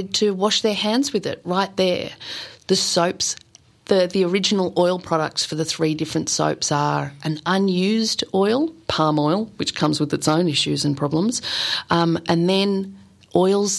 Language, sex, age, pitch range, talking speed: English, female, 30-49, 165-205 Hz, 165 wpm